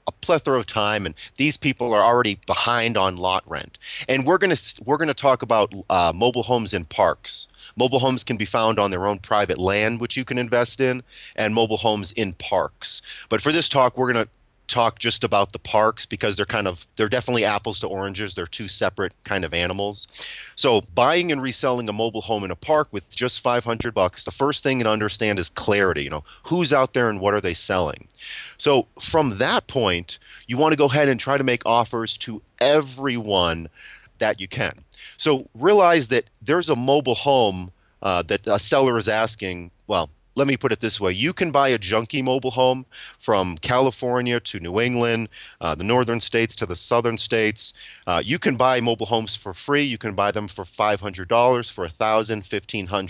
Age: 30-49